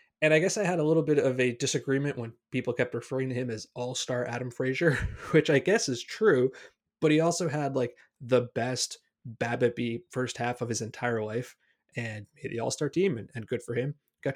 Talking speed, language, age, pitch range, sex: 220 wpm, English, 20-39, 120-150 Hz, male